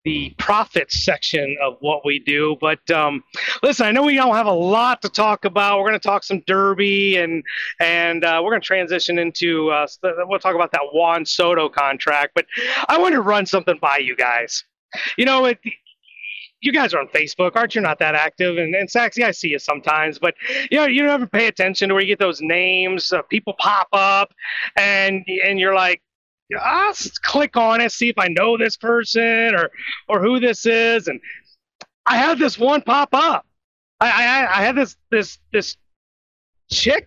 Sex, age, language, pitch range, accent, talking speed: male, 30-49, English, 175-245 Hz, American, 200 wpm